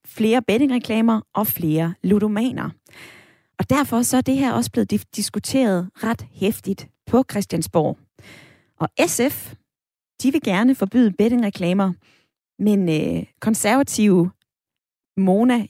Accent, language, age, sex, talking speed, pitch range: native, Danish, 20-39, female, 110 wpm, 175-220 Hz